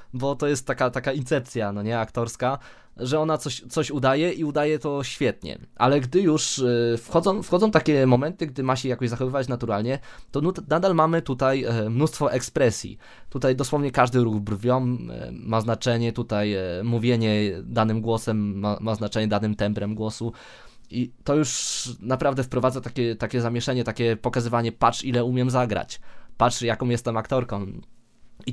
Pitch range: 110-130 Hz